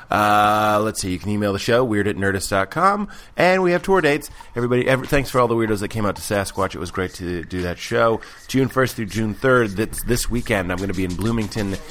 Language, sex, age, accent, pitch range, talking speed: English, male, 30-49, American, 100-125 Hz, 245 wpm